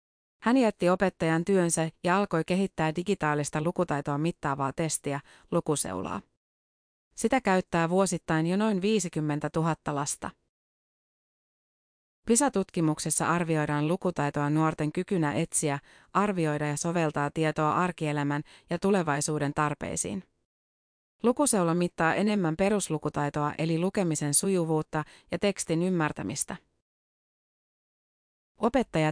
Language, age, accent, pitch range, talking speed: Finnish, 30-49, native, 155-190 Hz, 95 wpm